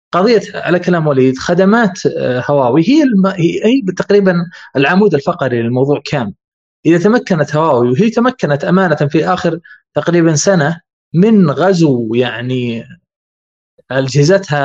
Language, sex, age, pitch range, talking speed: Arabic, male, 20-39, 140-185 Hz, 110 wpm